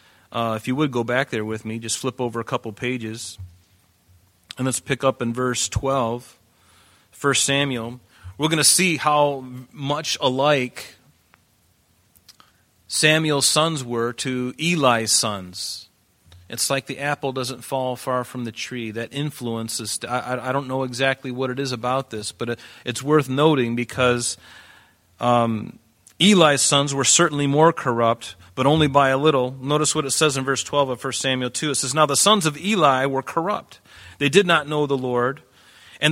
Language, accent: English, American